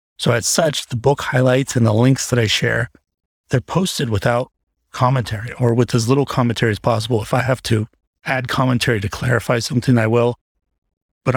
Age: 40-59